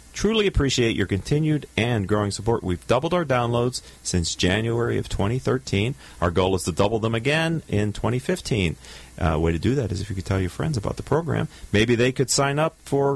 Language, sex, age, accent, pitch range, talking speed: English, male, 40-59, American, 95-140 Hz, 205 wpm